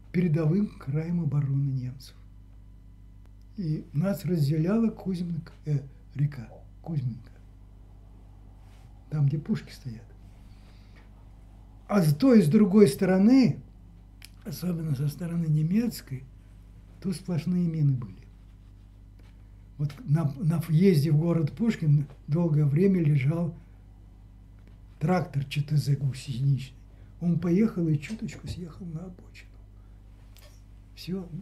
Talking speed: 95 wpm